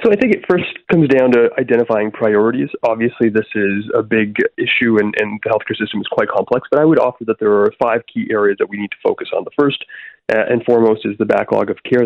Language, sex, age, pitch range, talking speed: English, male, 20-39, 105-125 Hz, 250 wpm